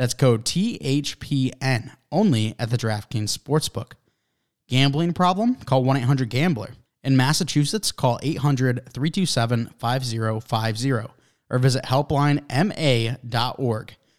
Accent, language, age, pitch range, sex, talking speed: American, English, 20-39, 115-150 Hz, male, 80 wpm